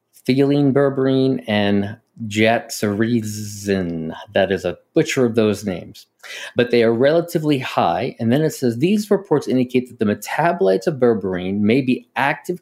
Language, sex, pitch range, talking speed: English, male, 100-120 Hz, 145 wpm